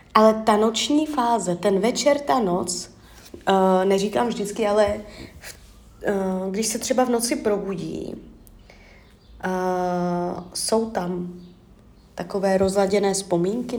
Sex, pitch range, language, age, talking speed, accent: female, 175-225 Hz, Czech, 30-49, 95 wpm, native